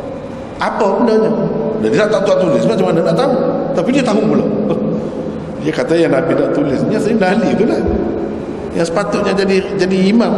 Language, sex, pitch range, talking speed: Malay, male, 195-245 Hz, 185 wpm